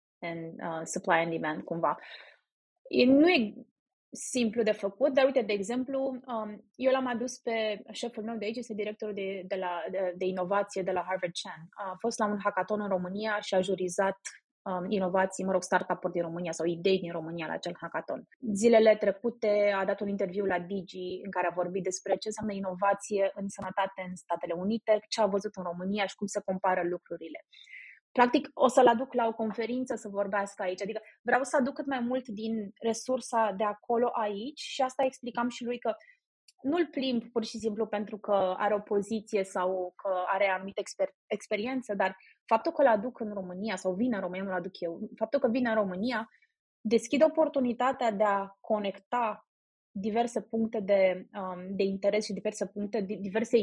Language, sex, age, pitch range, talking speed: Romanian, female, 20-39, 190-240 Hz, 190 wpm